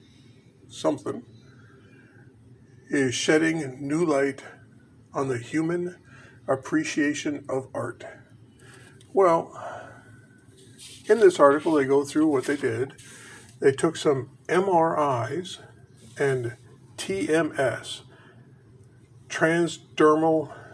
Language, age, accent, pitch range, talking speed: English, 50-69, American, 125-155 Hz, 80 wpm